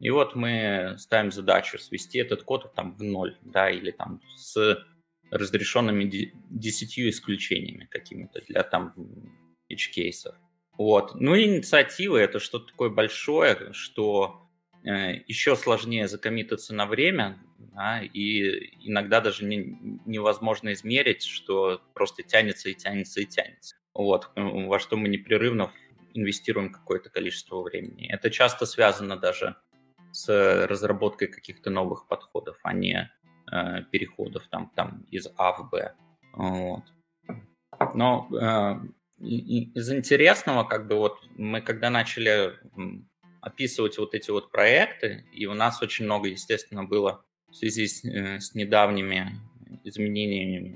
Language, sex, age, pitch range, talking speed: Russian, male, 20-39, 100-120 Hz, 125 wpm